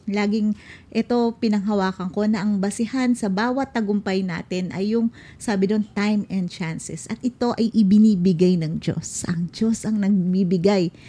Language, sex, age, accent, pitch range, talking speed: Filipino, female, 40-59, native, 190-230 Hz, 150 wpm